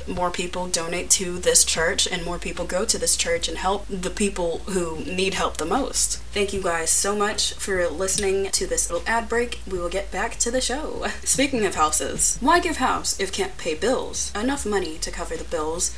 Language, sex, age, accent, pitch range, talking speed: English, female, 20-39, American, 175-245 Hz, 215 wpm